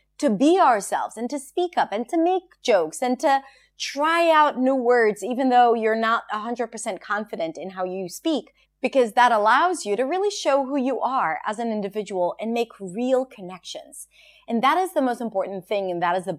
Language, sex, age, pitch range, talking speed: English, female, 30-49, 195-275 Hz, 200 wpm